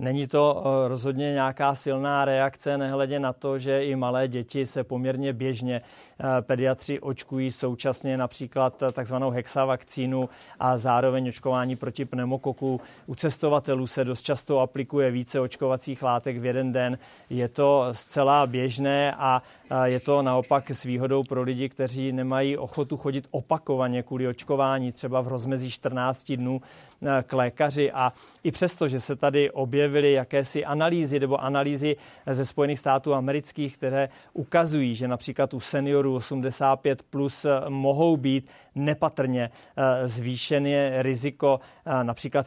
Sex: male